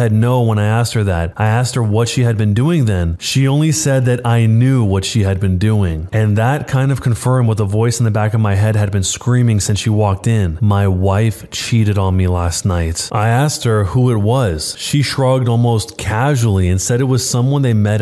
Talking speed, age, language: 235 wpm, 20-39, English